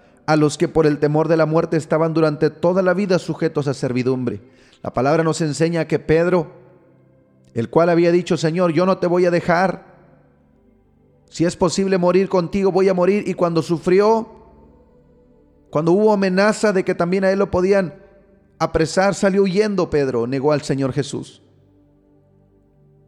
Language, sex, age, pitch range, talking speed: Spanish, male, 30-49, 130-170 Hz, 165 wpm